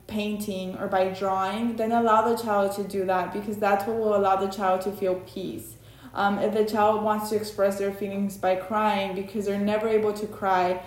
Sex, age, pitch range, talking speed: female, 20-39, 195-215 Hz, 210 wpm